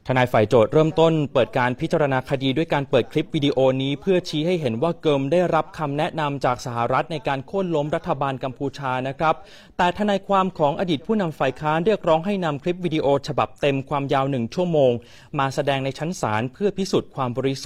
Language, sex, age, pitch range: Thai, male, 30-49, 125-160 Hz